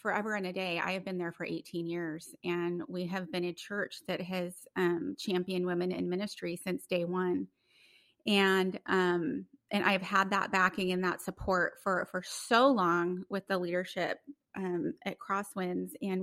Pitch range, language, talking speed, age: 180-210 Hz, English, 175 wpm, 30-49